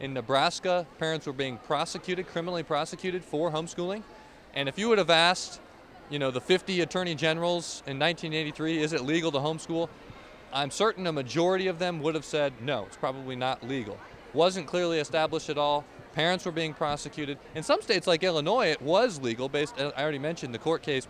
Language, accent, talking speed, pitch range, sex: English, American, 190 wpm, 140-175 Hz, male